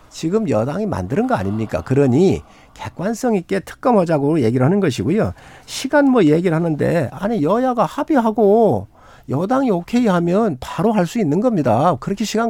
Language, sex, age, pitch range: Korean, male, 50-69, 165-240 Hz